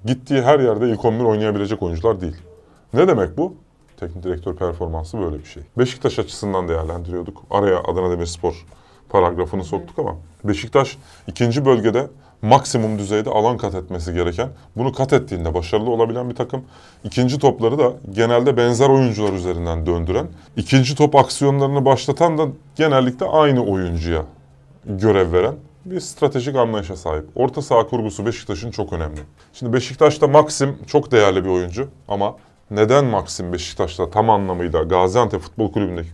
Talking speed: 145 wpm